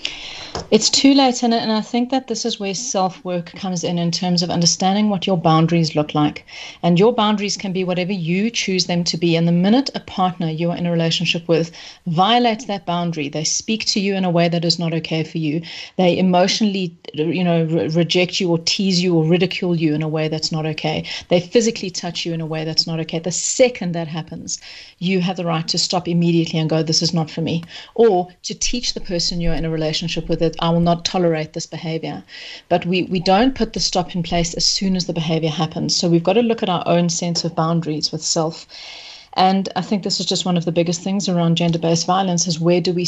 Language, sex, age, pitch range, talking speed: English, female, 40-59, 165-195 Hz, 235 wpm